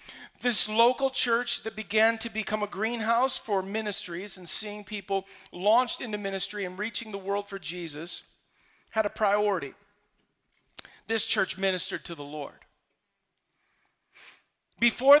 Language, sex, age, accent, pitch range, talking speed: English, male, 50-69, American, 190-235 Hz, 130 wpm